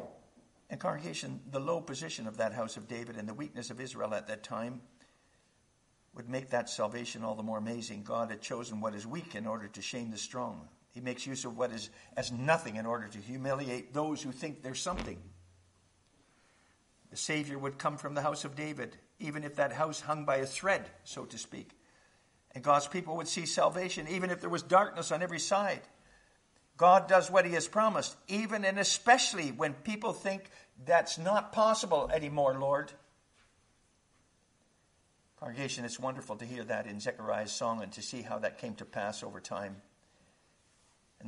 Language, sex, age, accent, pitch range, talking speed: English, male, 60-79, American, 115-155 Hz, 185 wpm